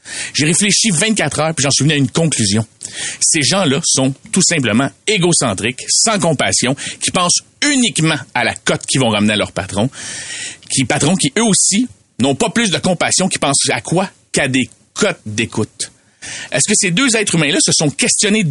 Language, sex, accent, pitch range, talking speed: French, male, Canadian, 125-180 Hz, 190 wpm